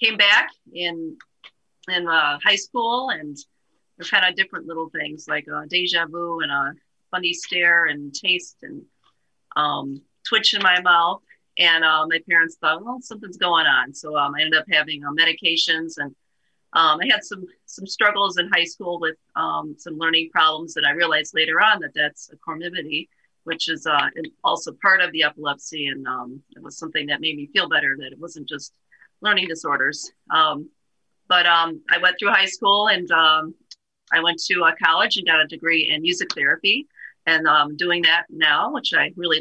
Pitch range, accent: 155-185 Hz, American